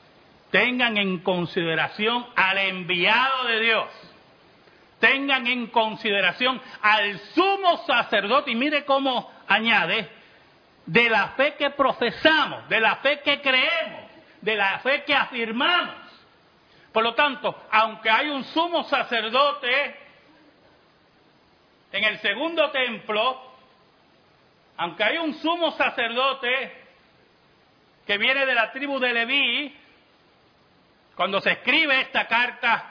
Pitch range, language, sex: 215-275 Hz, Spanish, male